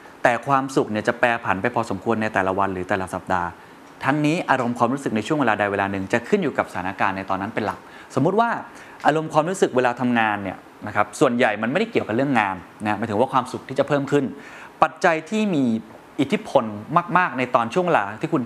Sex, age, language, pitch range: male, 20-39, Thai, 105-140 Hz